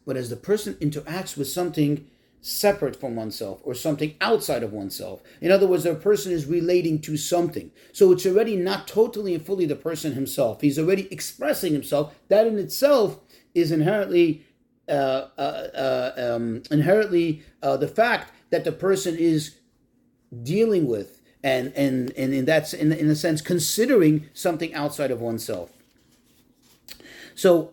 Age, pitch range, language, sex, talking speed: 40-59, 150-205 Hz, English, male, 155 wpm